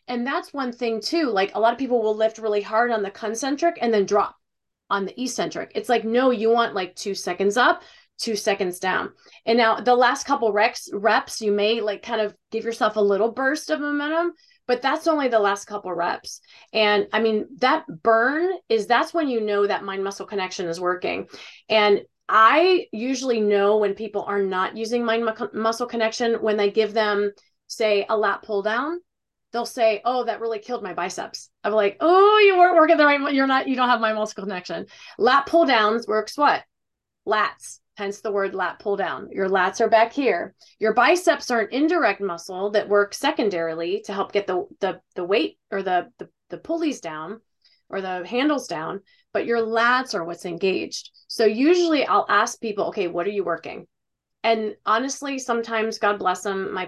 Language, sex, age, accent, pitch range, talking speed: English, female, 30-49, American, 200-255 Hz, 190 wpm